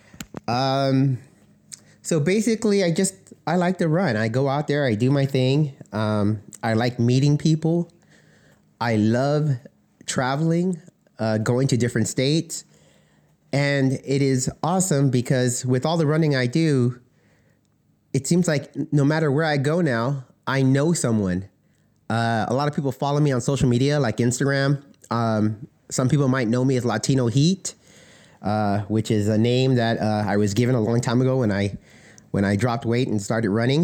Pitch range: 115-145 Hz